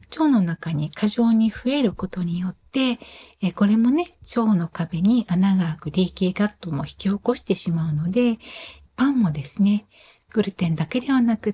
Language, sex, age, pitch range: Japanese, female, 60-79, 185-255 Hz